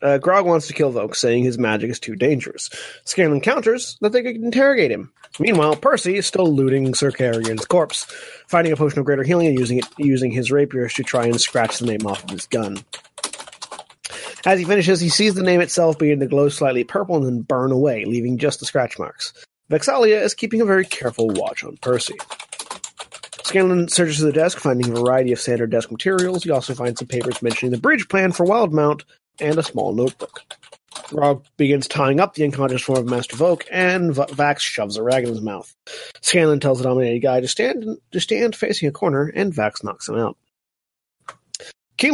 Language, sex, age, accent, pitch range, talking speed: English, male, 30-49, American, 130-190 Hz, 205 wpm